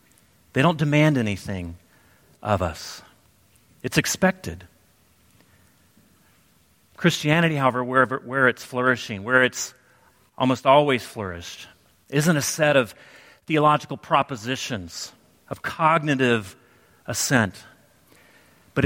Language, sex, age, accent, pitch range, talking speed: English, male, 40-59, American, 120-170 Hz, 90 wpm